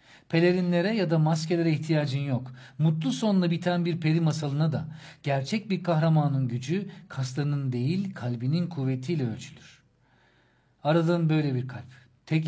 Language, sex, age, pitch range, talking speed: Turkish, male, 50-69, 125-155 Hz, 130 wpm